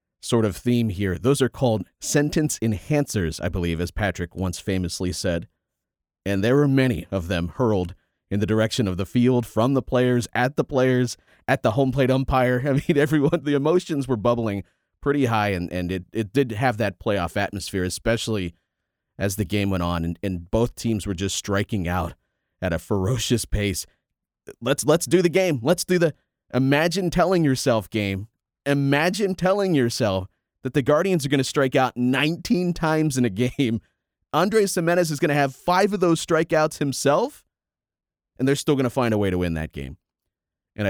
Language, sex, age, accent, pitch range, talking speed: English, male, 30-49, American, 95-140 Hz, 190 wpm